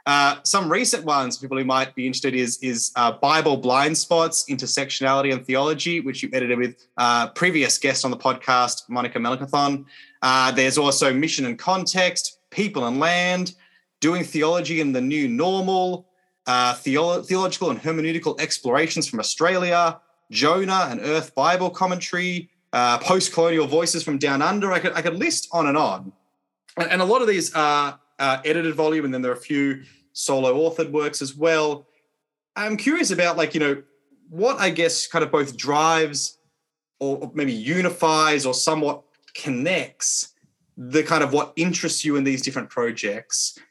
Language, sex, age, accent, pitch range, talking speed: English, male, 20-39, Australian, 135-170 Hz, 170 wpm